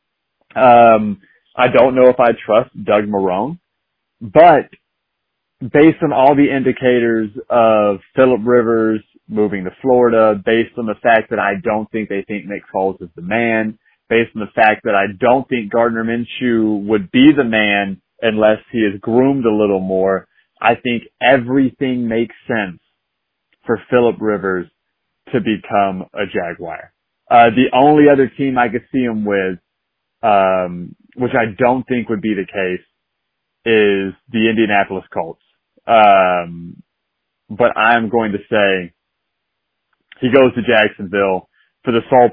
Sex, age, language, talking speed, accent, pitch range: male, 30-49, English, 150 wpm, American, 105-125 Hz